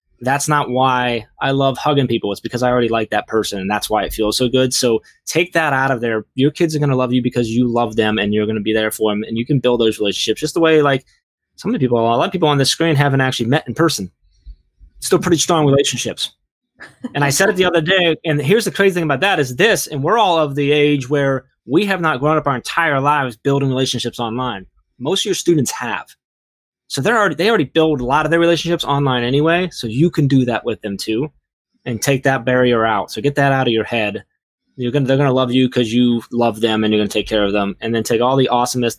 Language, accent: English, American